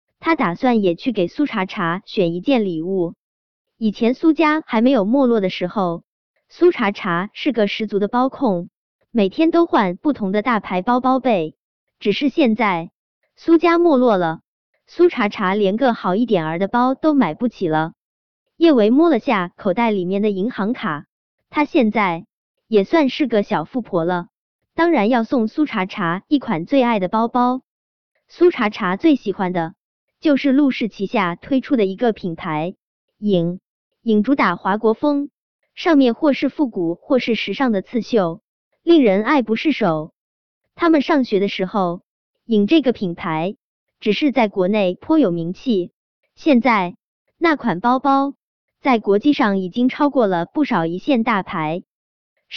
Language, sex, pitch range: Chinese, male, 190-275 Hz